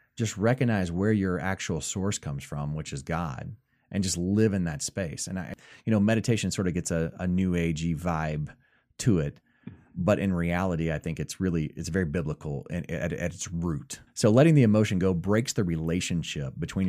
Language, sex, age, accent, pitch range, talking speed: English, male, 30-49, American, 80-105 Hz, 195 wpm